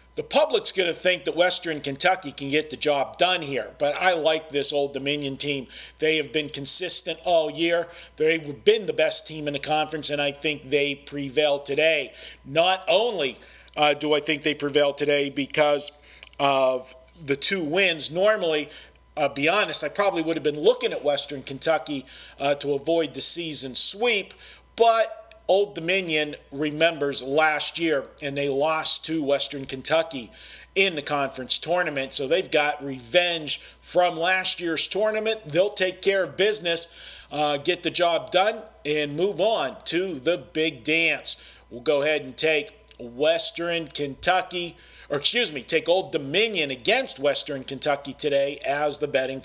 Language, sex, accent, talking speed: English, male, American, 165 wpm